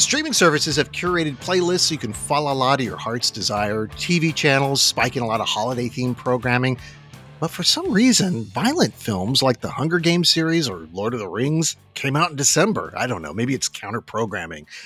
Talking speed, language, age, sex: 200 wpm, English, 40-59, male